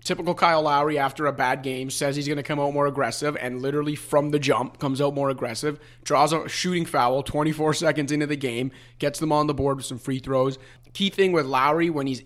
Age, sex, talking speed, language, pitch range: 30-49, male, 235 wpm, English, 135-165 Hz